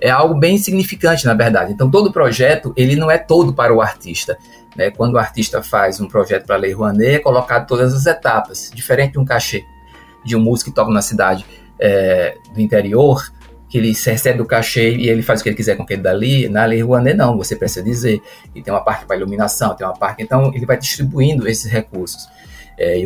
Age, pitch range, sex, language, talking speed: 20-39, 105-135 Hz, male, Portuguese, 220 wpm